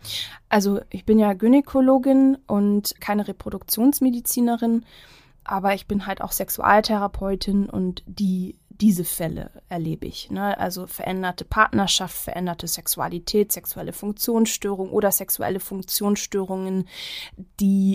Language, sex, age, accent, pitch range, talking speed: German, female, 20-39, German, 180-205 Hz, 105 wpm